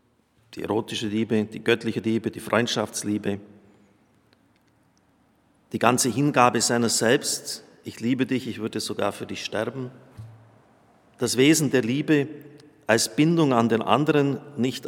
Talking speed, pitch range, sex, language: 130 wpm, 110-130 Hz, male, German